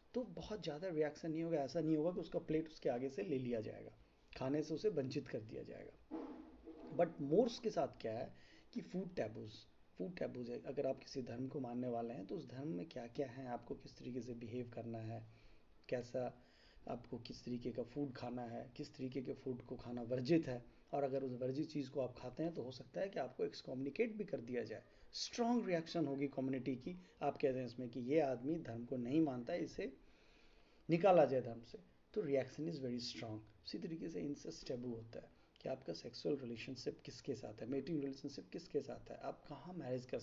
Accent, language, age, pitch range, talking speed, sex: native, Hindi, 30-49, 125-155 Hz, 215 wpm, male